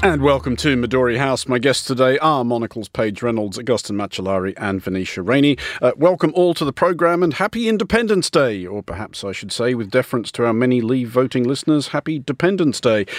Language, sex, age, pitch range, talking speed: English, male, 50-69, 110-155 Hz, 195 wpm